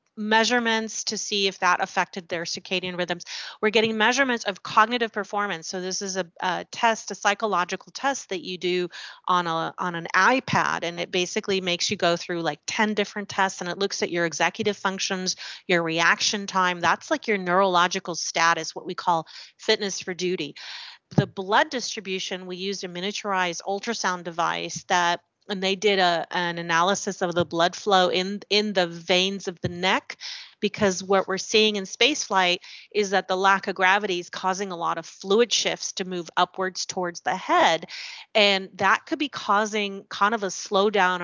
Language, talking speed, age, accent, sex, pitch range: English, 180 wpm, 30-49, American, female, 175-205 Hz